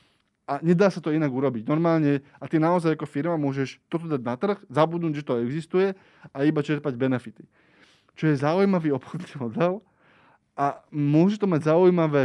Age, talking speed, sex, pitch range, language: 20-39, 170 wpm, male, 135-165 Hz, Slovak